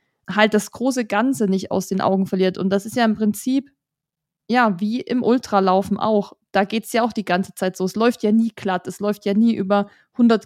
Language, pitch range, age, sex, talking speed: German, 200-230 Hz, 20-39, female, 230 wpm